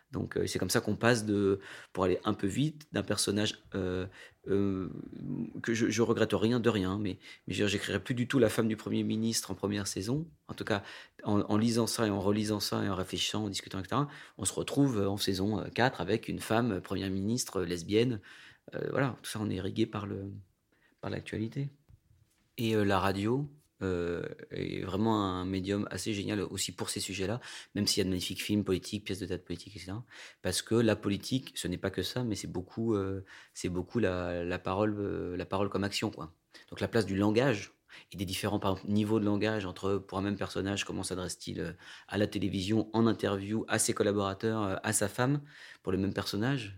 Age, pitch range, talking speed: 30-49, 95-110 Hz, 210 wpm